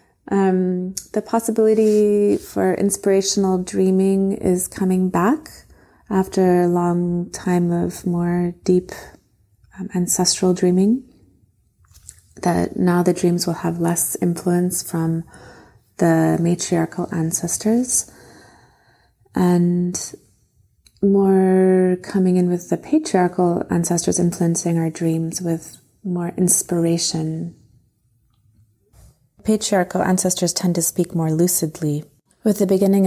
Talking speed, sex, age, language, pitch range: 100 wpm, female, 20-39, English, 165-195 Hz